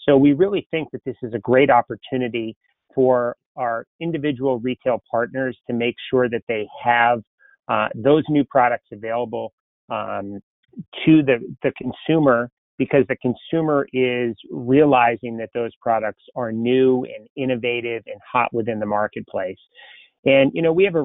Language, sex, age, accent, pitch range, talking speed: English, male, 30-49, American, 115-135 Hz, 155 wpm